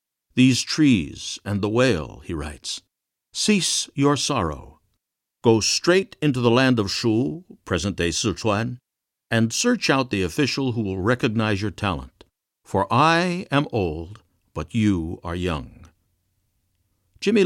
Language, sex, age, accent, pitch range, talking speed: English, male, 60-79, American, 95-130 Hz, 135 wpm